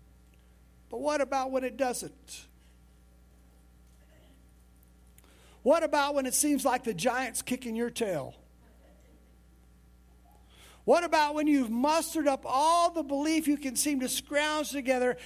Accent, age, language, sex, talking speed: American, 50-69, English, male, 120 wpm